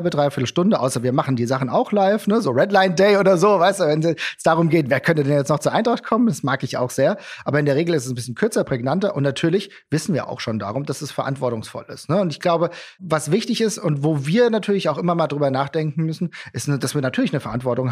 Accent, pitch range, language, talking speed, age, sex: German, 135-180 Hz, German, 260 wpm, 40-59, male